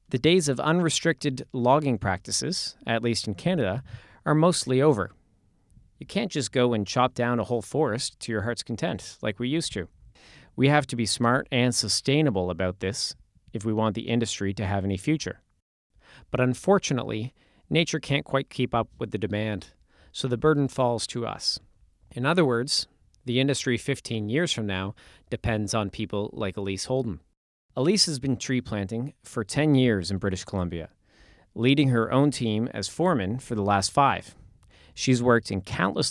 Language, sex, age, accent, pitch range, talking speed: English, male, 40-59, American, 105-135 Hz, 175 wpm